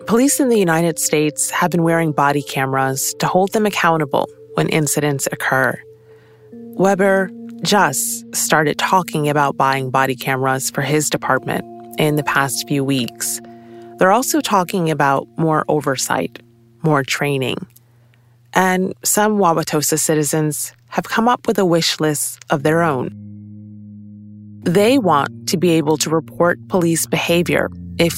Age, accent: 30-49, American